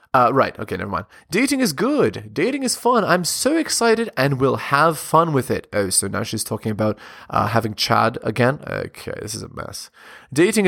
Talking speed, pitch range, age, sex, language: 200 wpm, 110-150 Hz, 20-39, male, English